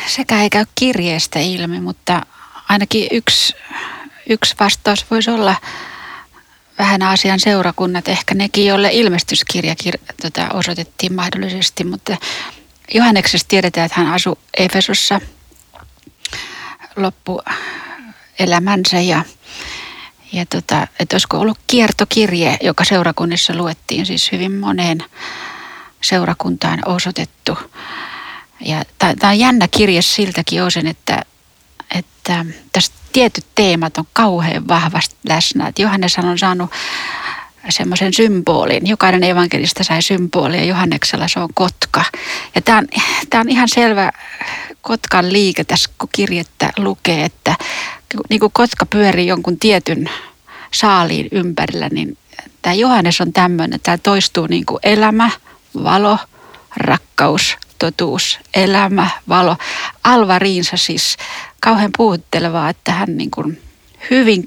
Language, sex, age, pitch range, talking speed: Finnish, female, 30-49, 175-220 Hz, 110 wpm